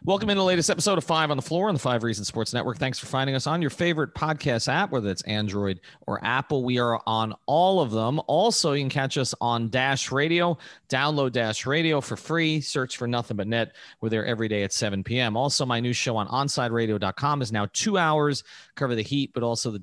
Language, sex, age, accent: English, male, 30-49, American